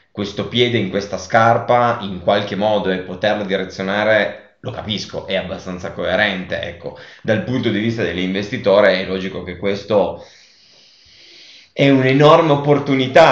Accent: native